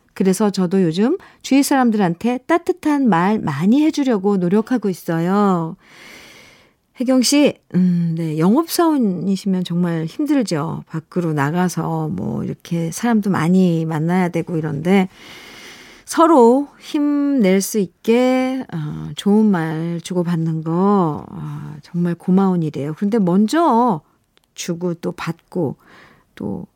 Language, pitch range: Korean, 175-260 Hz